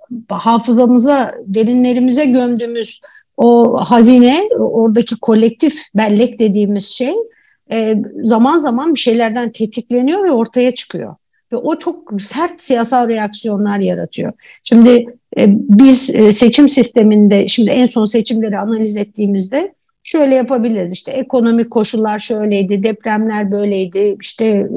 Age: 50-69